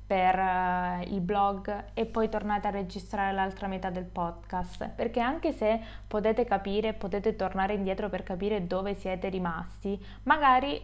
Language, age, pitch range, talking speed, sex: Italian, 20-39, 185-225 Hz, 145 wpm, female